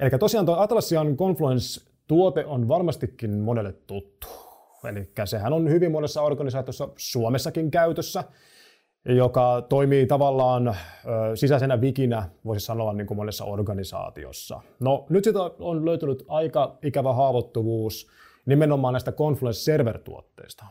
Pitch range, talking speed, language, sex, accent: 115-155 Hz, 115 wpm, Finnish, male, native